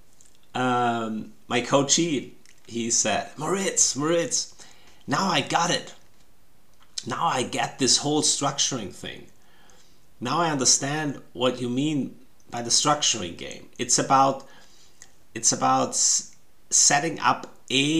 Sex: male